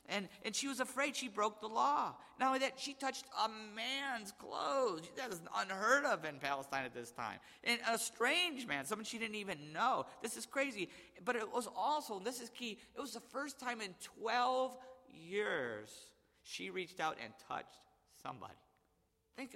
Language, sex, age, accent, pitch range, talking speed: English, male, 50-69, American, 215-275 Hz, 185 wpm